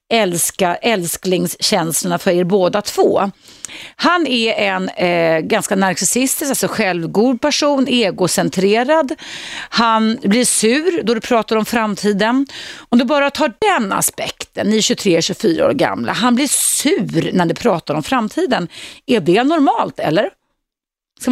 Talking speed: 130 wpm